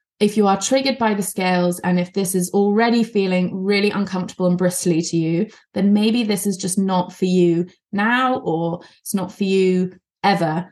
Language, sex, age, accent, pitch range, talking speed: English, female, 20-39, British, 180-220 Hz, 190 wpm